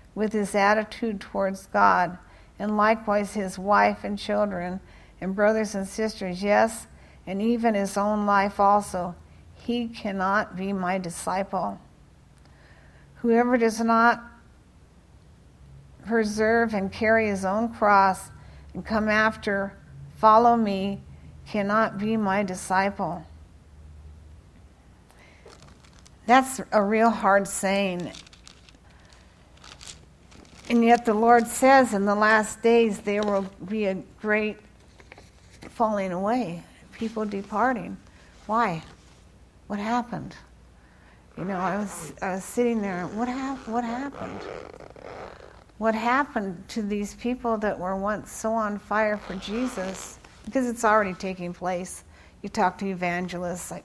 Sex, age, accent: female, 50-69, American